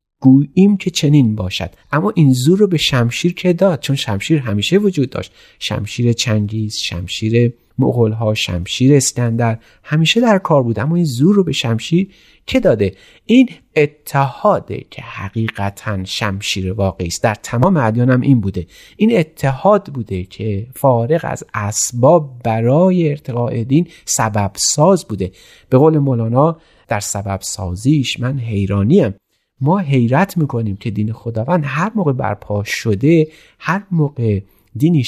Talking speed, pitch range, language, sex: 140 wpm, 105-155 Hz, Persian, male